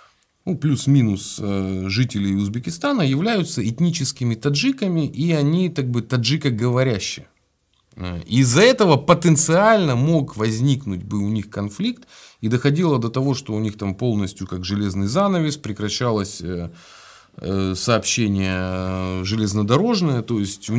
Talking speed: 115 wpm